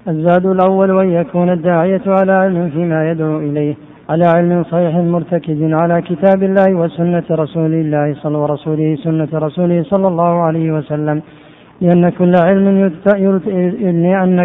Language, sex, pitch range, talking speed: Arabic, male, 160-180 Hz, 130 wpm